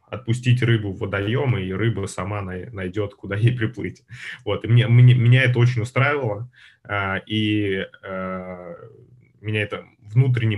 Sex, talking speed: male, 120 wpm